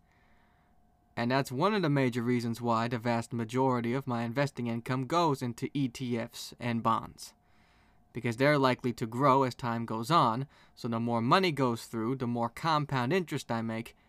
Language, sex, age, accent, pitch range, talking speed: English, male, 20-39, American, 120-150 Hz, 175 wpm